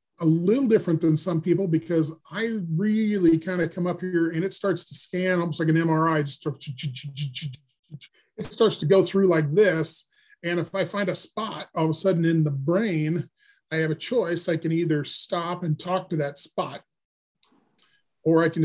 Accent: American